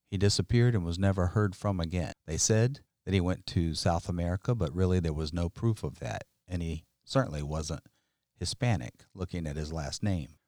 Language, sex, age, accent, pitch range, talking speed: English, male, 50-69, American, 90-115 Hz, 195 wpm